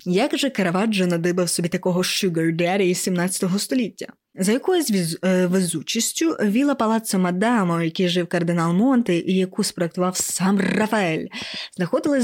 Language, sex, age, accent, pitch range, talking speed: Ukrainian, female, 20-39, native, 180-220 Hz, 135 wpm